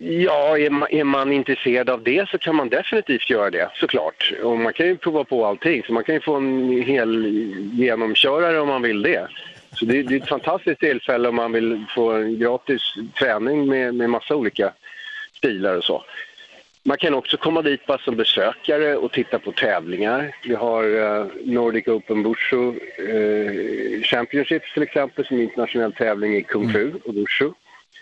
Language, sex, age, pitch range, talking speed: Swedish, male, 40-59, 110-135 Hz, 185 wpm